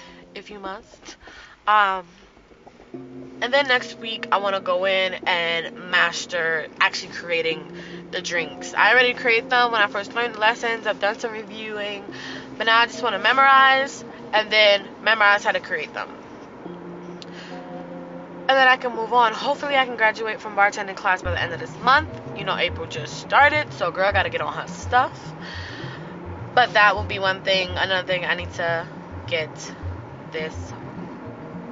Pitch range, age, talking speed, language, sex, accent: 190-245 Hz, 20-39, 175 wpm, English, female, American